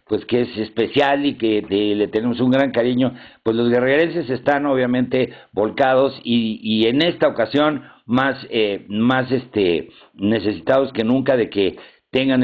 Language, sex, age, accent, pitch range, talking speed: Spanish, male, 50-69, Mexican, 110-130 Hz, 155 wpm